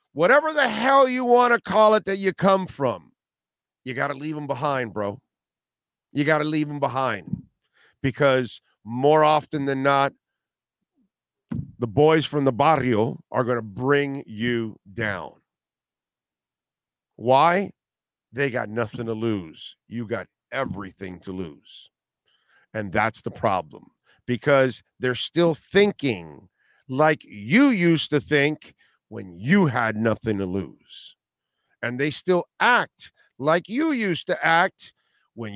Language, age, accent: English, 50-69, American